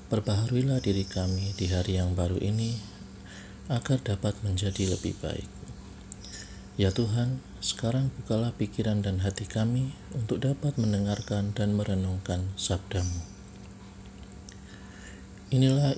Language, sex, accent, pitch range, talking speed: Indonesian, male, native, 95-115 Hz, 105 wpm